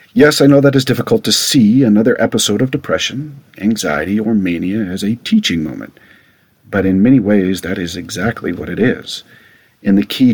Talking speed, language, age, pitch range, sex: 185 wpm, English, 50-69, 95-125 Hz, male